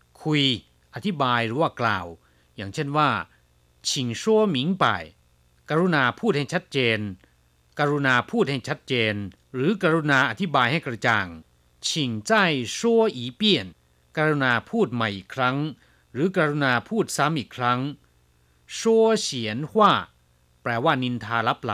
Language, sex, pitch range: Chinese, male, 100-165 Hz